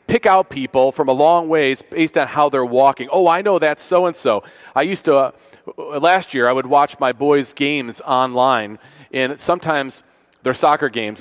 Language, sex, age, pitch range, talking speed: English, male, 40-59, 140-180 Hz, 185 wpm